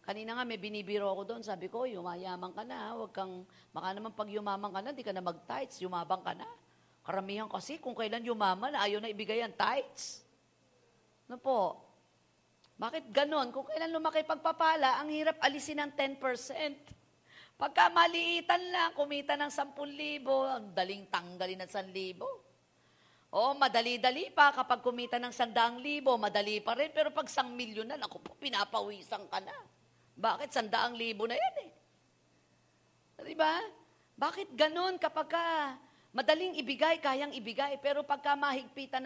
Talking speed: 155 wpm